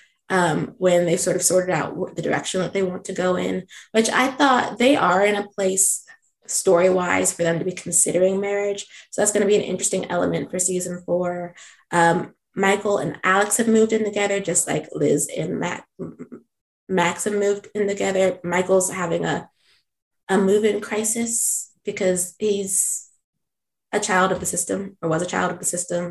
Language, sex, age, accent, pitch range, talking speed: English, female, 20-39, American, 175-205 Hz, 180 wpm